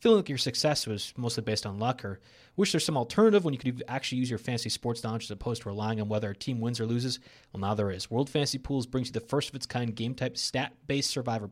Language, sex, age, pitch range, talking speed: English, male, 30-49, 115-140 Hz, 250 wpm